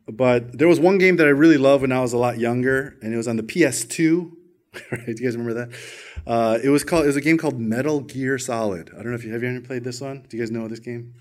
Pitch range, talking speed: 125-190 Hz, 290 wpm